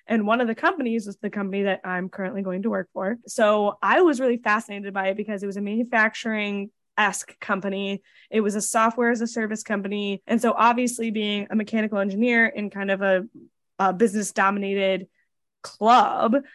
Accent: American